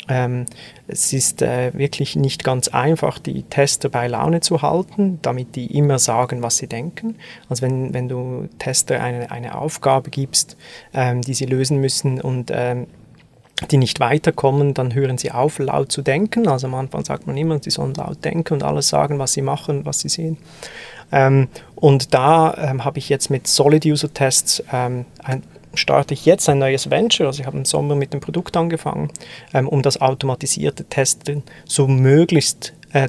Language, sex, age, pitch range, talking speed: German, male, 30-49, 130-155 Hz, 180 wpm